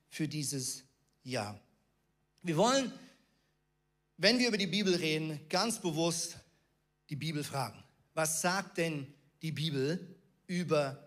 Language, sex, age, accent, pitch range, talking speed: German, male, 40-59, German, 155-215 Hz, 120 wpm